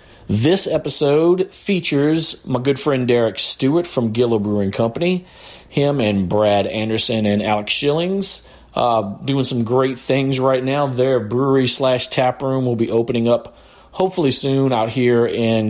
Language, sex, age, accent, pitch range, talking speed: English, male, 40-59, American, 110-135 Hz, 145 wpm